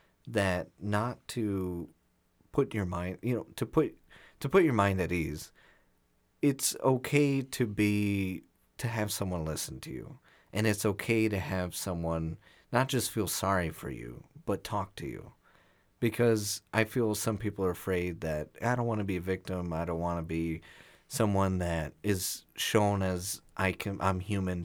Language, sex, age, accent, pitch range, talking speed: English, male, 30-49, American, 90-110 Hz, 175 wpm